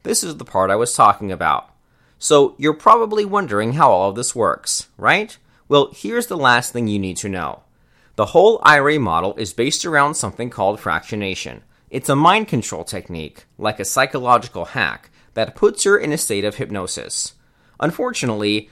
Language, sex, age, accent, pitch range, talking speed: English, male, 30-49, American, 105-160 Hz, 175 wpm